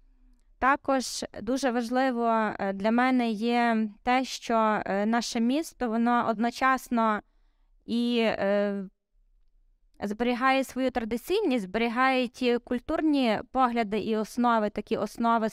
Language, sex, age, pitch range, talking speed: Ukrainian, female, 20-39, 215-245 Hz, 95 wpm